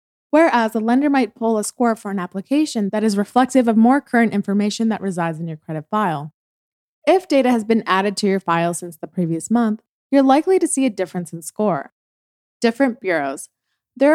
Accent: American